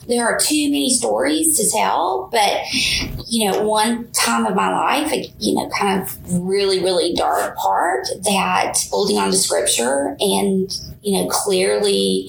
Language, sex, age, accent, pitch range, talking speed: English, female, 30-49, American, 185-250 Hz, 155 wpm